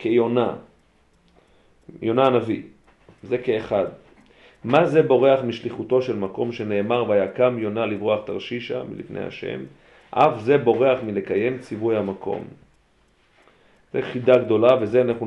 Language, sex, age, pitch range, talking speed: Hebrew, male, 40-59, 110-130 Hz, 115 wpm